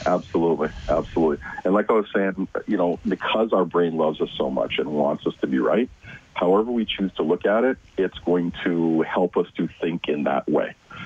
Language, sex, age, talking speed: English, male, 40-59, 210 wpm